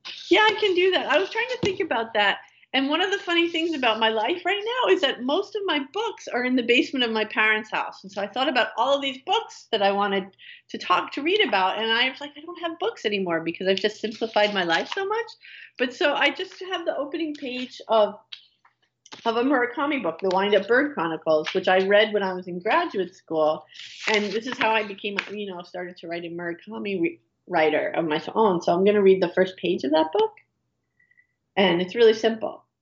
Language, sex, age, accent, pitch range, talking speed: English, female, 40-59, American, 180-280 Hz, 235 wpm